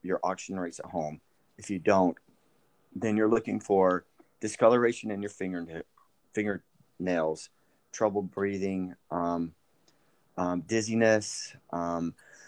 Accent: American